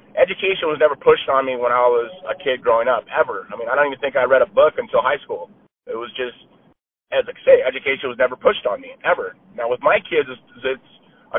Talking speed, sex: 240 wpm, male